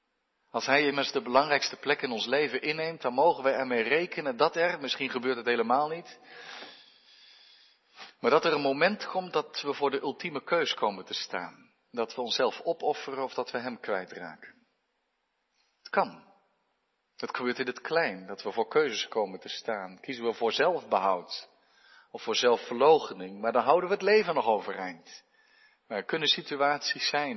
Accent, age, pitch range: Dutch, 40-59, 120-185 Hz